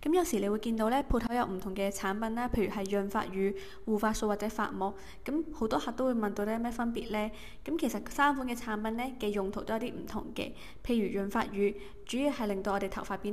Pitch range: 200-240 Hz